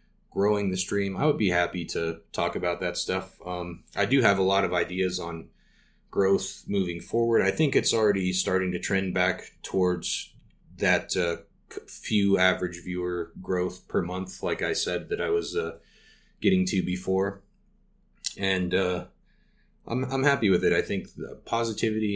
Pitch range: 85-100 Hz